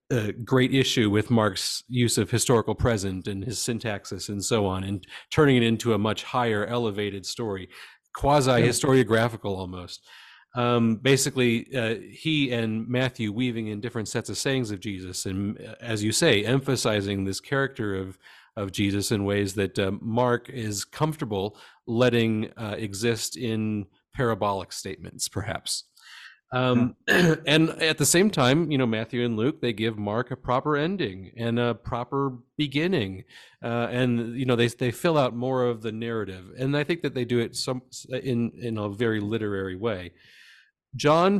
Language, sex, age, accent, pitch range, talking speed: English, male, 40-59, American, 105-130 Hz, 160 wpm